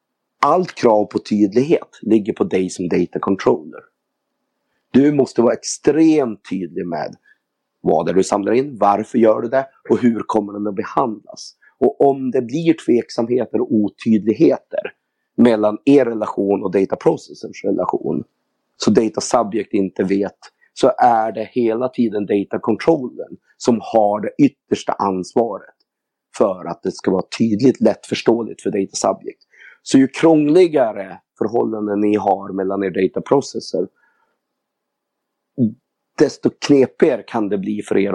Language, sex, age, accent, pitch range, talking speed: English, male, 30-49, Swedish, 105-130 Hz, 140 wpm